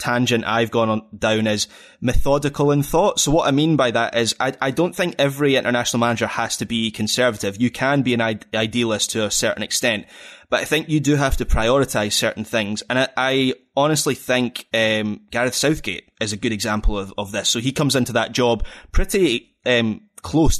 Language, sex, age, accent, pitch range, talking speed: English, male, 20-39, British, 110-130 Hz, 205 wpm